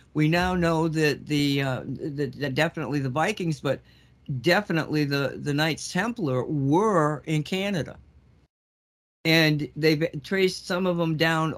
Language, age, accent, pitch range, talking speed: English, 60-79, American, 135-165 Hz, 140 wpm